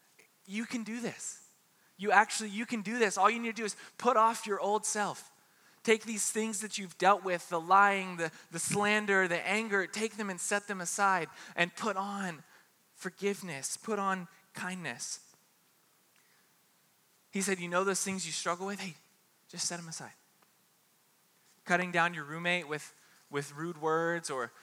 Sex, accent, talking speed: male, American, 175 wpm